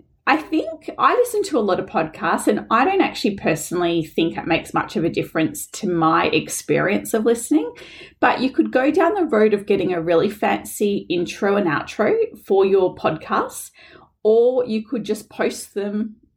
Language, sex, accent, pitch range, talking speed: English, female, Australian, 195-280 Hz, 185 wpm